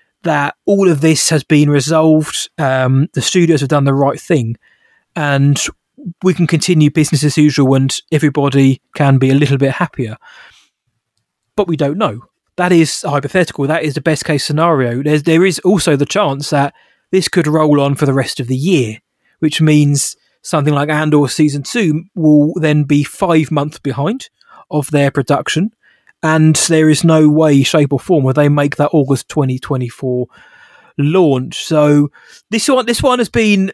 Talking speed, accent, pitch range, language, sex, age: 175 wpm, British, 140-170 Hz, English, male, 20-39